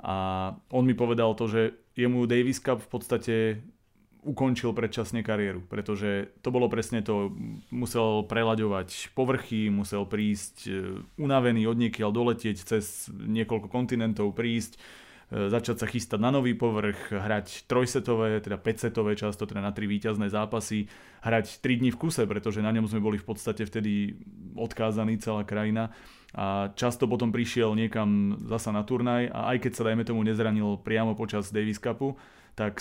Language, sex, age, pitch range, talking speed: Slovak, male, 30-49, 105-115 Hz, 150 wpm